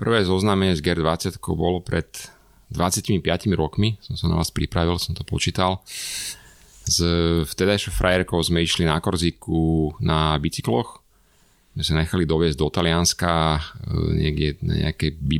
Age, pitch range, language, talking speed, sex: 30-49, 80-90 Hz, Slovak, 130 wpm, male